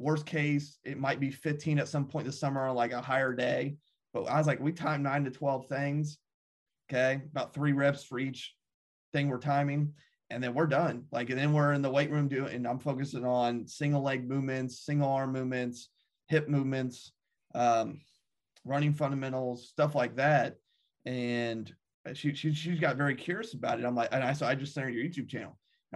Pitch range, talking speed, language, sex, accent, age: 130-160 Hz, 205 wpm, English, male, American, 30-49